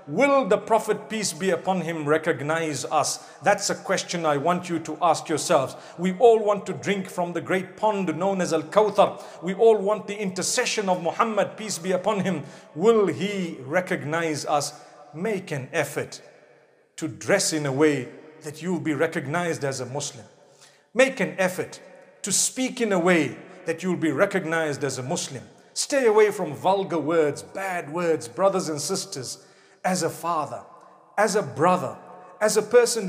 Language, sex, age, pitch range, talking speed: English, male, 50-69, 175-240 Hz, 170 wpm